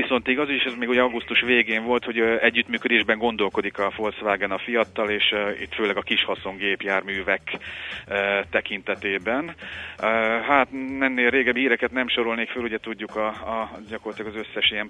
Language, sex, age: Hungarian, male, 30-49